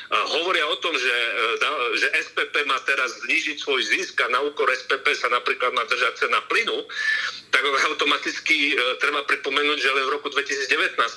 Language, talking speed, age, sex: Slovak, 170 wpm, 40-59, male